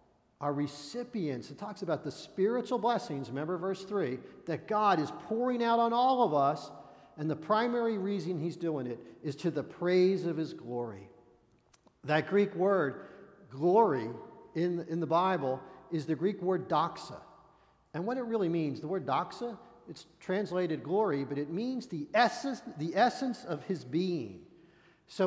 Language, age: English, 50-69